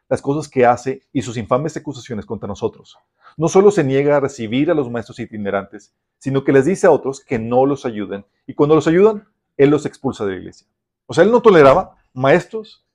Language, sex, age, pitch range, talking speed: Spanish, male, 40-59, 115-160 Hz, 215 wpm